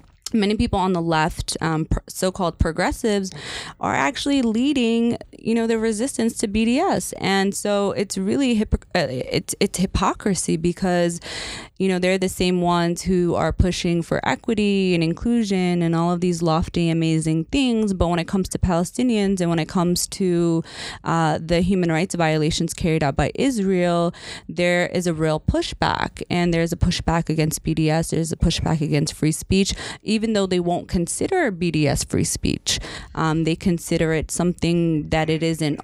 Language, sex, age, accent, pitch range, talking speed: English, female, 20-39, American, 160-190 Hz, 165 wpm